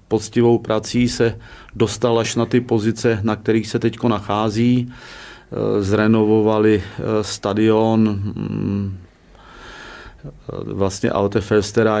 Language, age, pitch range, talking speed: Czech, 40-59, 105-110 Hz, 85 wpm